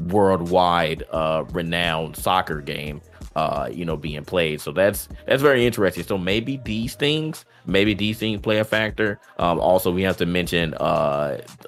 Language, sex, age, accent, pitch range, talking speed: English, male, 20-39, American, 80-90 Hz, 165 wpm